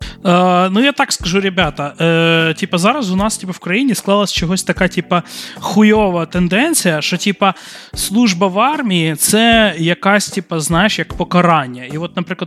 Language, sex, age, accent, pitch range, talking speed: Ukrainian, male, 20-39, native, 160-205 Hz, 165 wpm